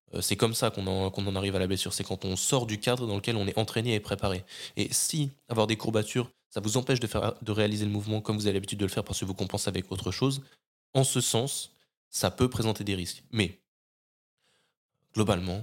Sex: male